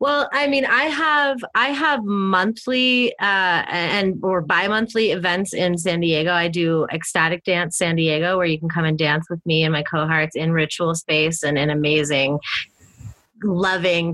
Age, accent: 20-39, American